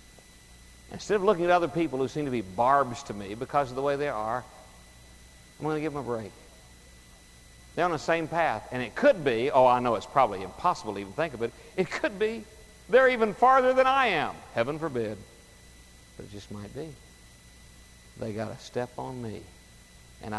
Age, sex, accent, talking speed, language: 50-69, male, American, 205 wpm, English